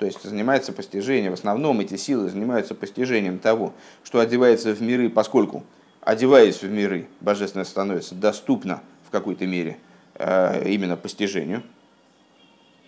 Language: Russian